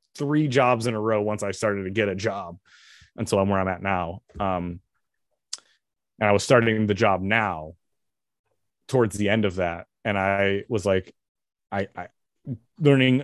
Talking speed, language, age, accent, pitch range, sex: 170 wpm, English, 20-39, American, 100-130 Hz, male